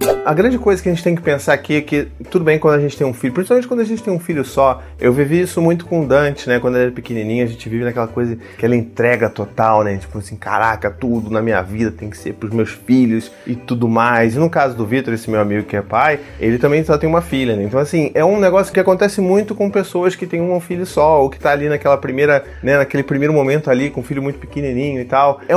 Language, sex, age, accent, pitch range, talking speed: Portuguese, male, 30-49, Brazilian, 115-160 Hz, 275 wpm